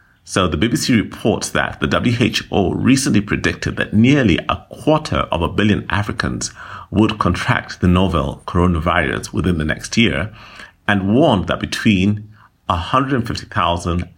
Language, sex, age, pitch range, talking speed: English, male, 50-69, 85-110 Hz, 130 wpm